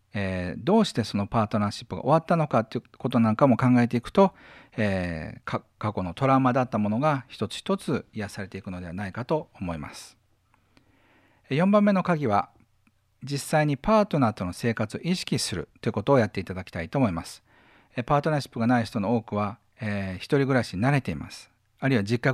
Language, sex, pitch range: Japanese, male, 100-140 Hz